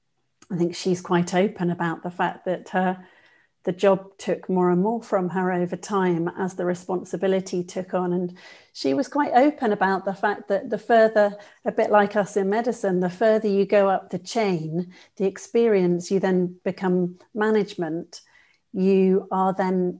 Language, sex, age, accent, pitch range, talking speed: English, female, 40-59, British, 185-210 Hz, 175 wpm